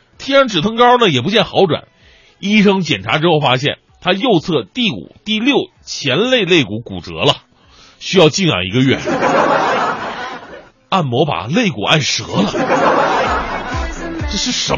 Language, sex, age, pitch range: Chinese, male, 30-49, 140-210 Hz